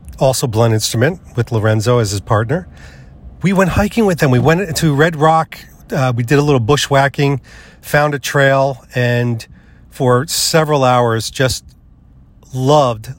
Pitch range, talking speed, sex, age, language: 115-140 Hz, 150 wpm, male, 40-59, English